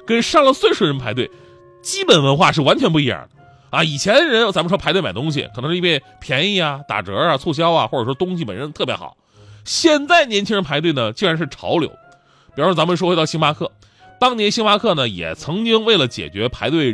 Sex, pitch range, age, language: male, 125-195 Hz, 20-39, Chinese